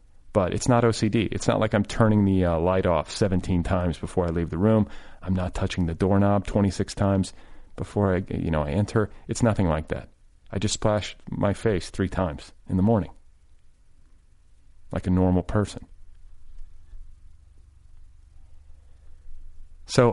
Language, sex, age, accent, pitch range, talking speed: English, male, 40-59, American, 80-110 Hz, 155 wpm